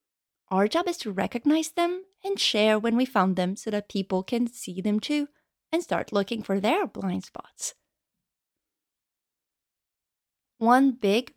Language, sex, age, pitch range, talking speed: English, female, 30-49, 205-290 Hz, 150 wpm